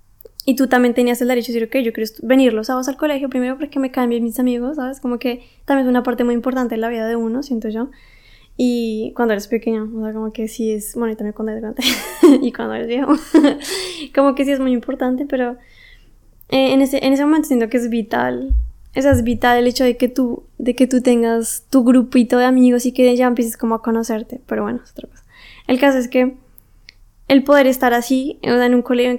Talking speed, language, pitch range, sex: 235 wpm, Spanish, 235-260 Hz, female